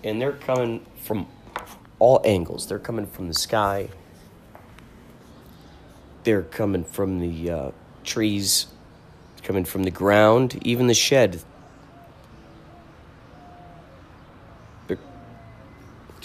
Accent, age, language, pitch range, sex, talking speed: American, 40-59, English, 80-110 Hz, male, 95 wpm